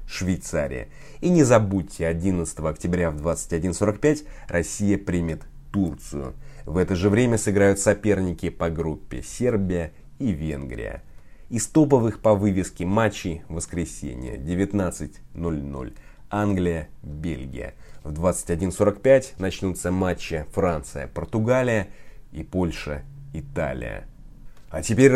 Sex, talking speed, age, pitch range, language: male, 95 wpm, 30-49, 80-105 Hz, Russian